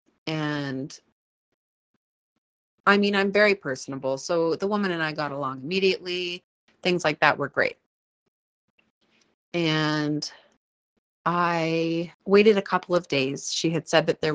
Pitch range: 145-175 Hz